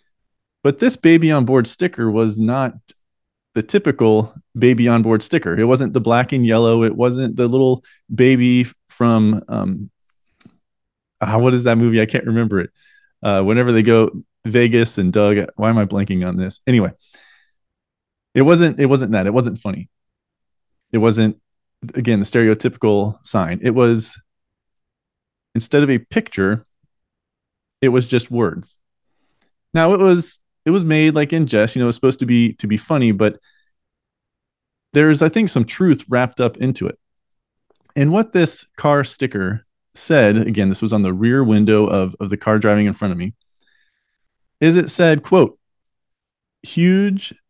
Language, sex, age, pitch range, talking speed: English, male, 30-49, 105-140 Hz, 165 wpm